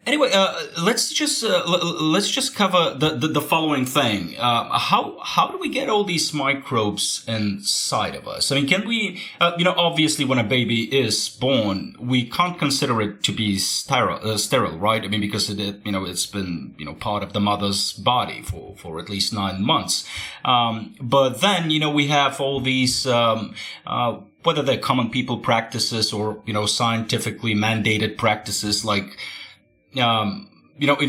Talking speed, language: 185 wpm, Bulgarian